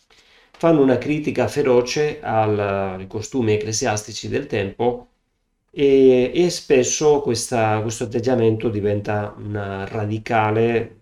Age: 30-49